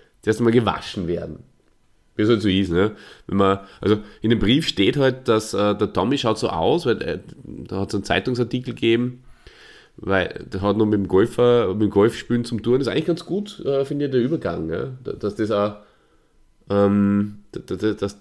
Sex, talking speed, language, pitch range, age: male, 205 wpm, German, 95-120 Hz, 30-49